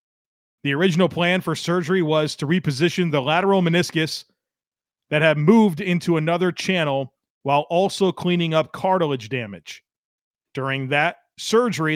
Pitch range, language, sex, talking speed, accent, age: 150-180 Hz, English, male, 130 wpm, American, 40-59